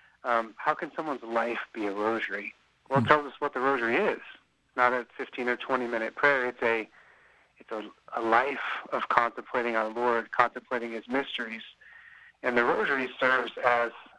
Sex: male